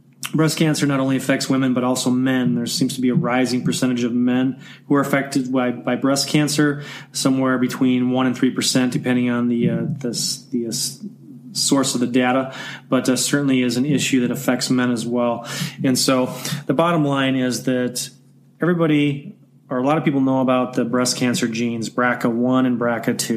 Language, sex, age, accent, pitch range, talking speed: English, male, 30-49, American, 125-140 Hz, 190 wpm